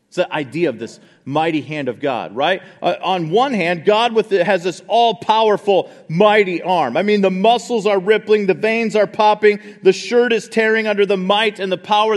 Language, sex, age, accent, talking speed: English, male, 40-59, American, 195 wpm